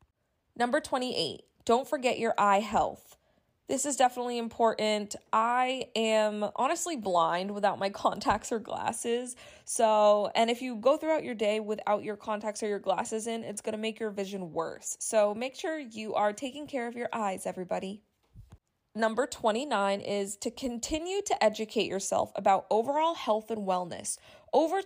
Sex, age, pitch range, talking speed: female, 20-39, 205-255 Hz, 160 wpm